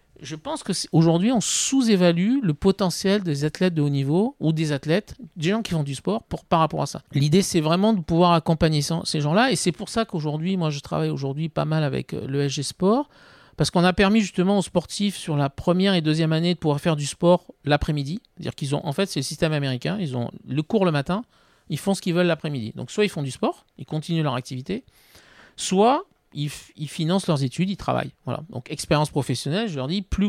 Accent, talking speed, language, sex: French, 225 wpm, French, male